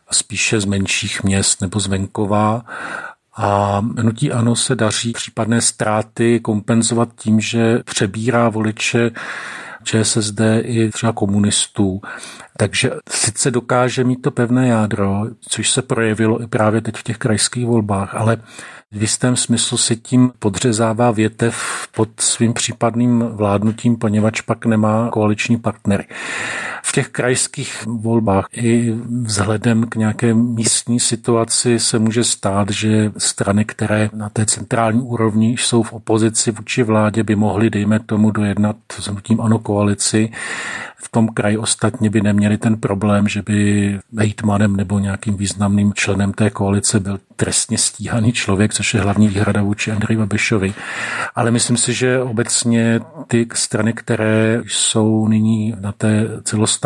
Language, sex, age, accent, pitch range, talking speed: Czech, male, 50-69, native, 105-115 Hz, 140 wpm